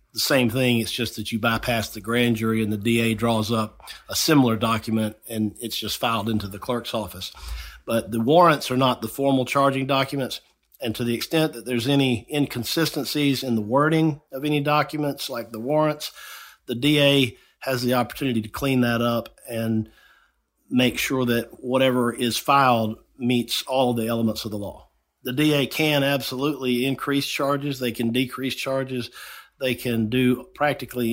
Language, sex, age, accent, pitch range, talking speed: English, male, 50-69, American, 115-135 Hz, 170 wpm